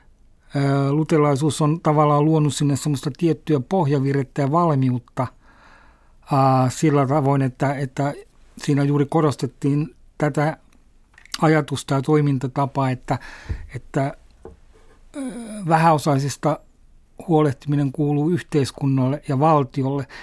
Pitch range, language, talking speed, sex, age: 140-155 Hz, Finnish, 90 wpm, male, 60-79